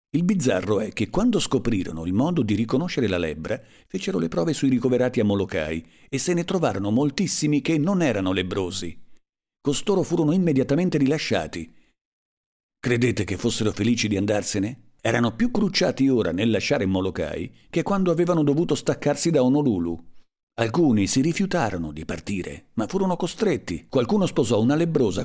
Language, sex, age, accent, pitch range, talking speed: Italian, male, 50-69, native, 100-150 Hz, 150 wpm